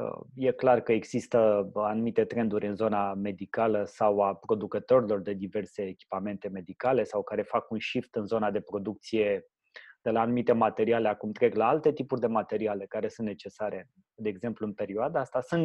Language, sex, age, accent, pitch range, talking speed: Romanian, male, 20-39, native, 105-125 Hz, 175 wpm